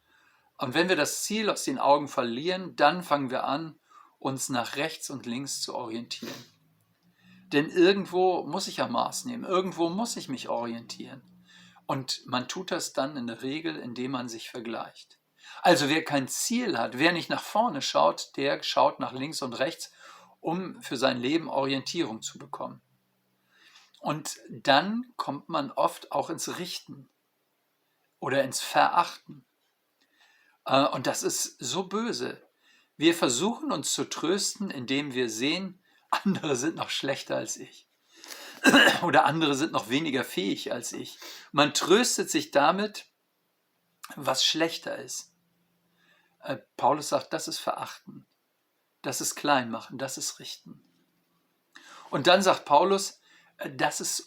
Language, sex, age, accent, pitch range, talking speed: German, male, 50-69, German, 135-195 Hz, 145 wpm